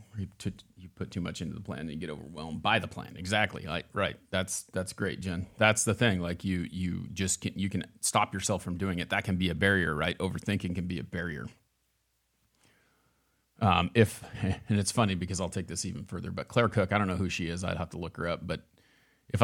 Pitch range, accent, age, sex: 90-105 Hz, American, 40-59, male